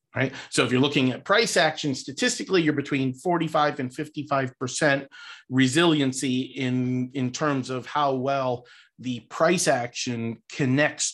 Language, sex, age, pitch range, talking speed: English, male, 40-59, 125-150 Hz, 140 wpm